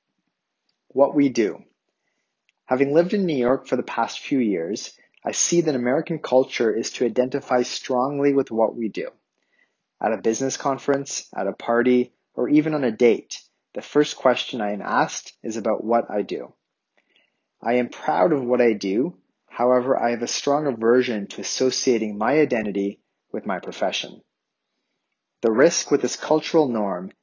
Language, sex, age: English, male, 30-49